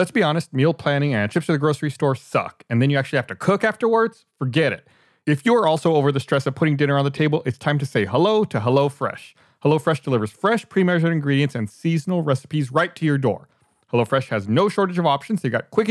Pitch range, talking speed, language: 135-185 Hz, 235 wpm, English